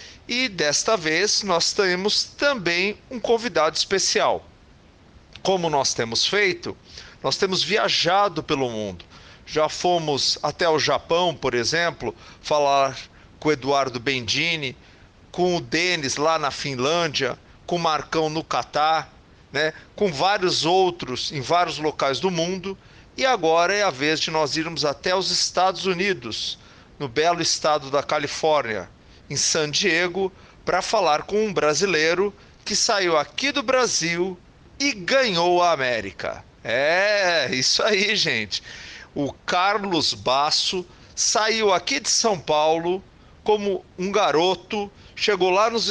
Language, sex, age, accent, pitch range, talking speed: Portuguese, male, 50-69, Brazilian, 150-200 Hz, 135 wpm